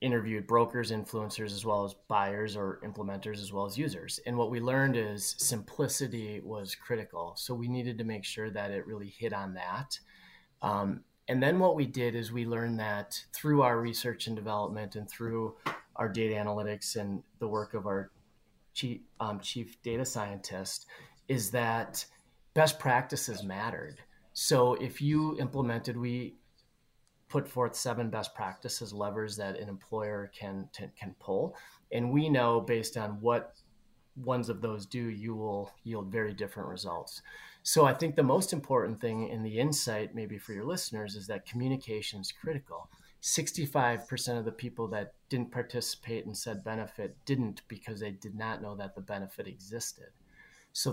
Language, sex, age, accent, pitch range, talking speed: English, male, 30-49, American, 105-120 Hz, 165 wpm